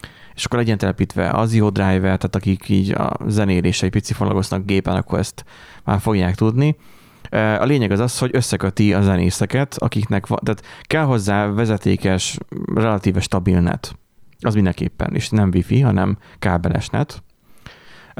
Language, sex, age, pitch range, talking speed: Hungarian, male, 30-49, 95-110 Hz, 135 wpm